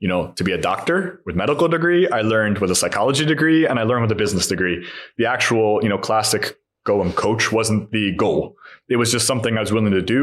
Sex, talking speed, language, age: male, 245 wpm, Hungarian, 20-39